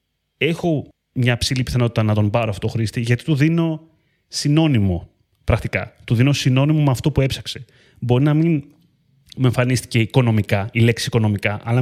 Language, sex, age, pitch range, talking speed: Greek, male, 30-49, 110-145 Hz, 160 wpm